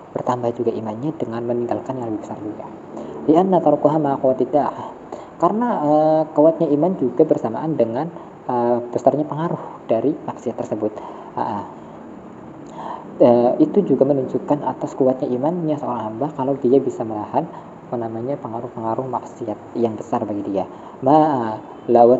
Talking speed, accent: 120 wpm, native